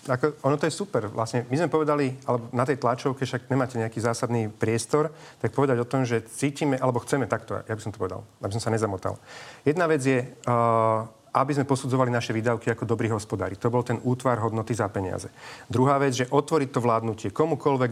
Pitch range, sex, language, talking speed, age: 115-140 Hz, male, Slovak, 210 wpm, 40-59